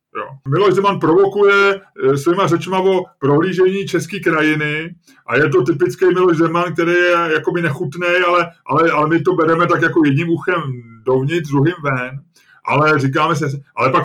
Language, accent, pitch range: Czech, native, 165-210 Hz